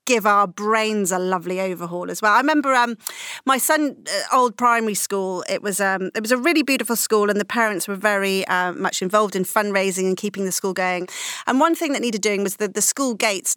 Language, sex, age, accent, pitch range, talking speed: English, female, 40-59, British, 200-285 Hz, 230 wpm